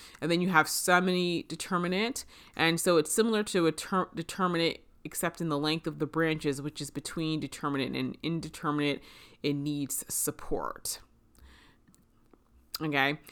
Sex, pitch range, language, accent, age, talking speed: female, 145-185 Hz, English, American, 30-49, 130 wpm